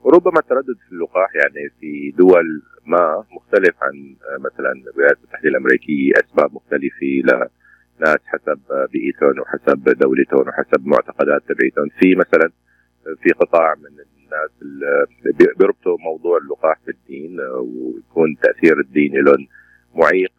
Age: 40-59